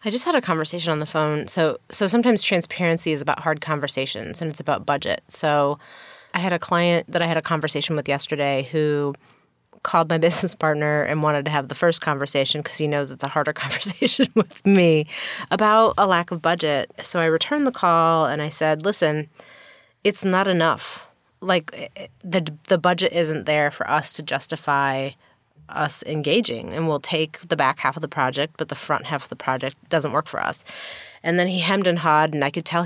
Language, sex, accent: English, female, American